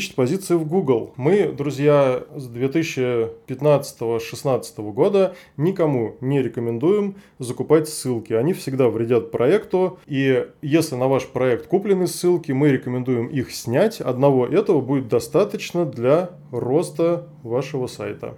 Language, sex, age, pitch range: Russian, male, 20-39, 125-150 Hz